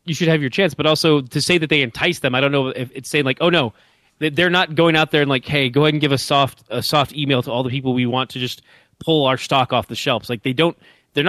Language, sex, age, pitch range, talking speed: English, male, 30-49, 125-150 Hz, 305 wpm